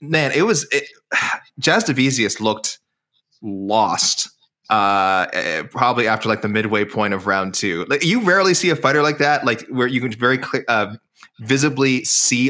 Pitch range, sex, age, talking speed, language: 100-130 Hz, male, 20-39, 175 wpm, English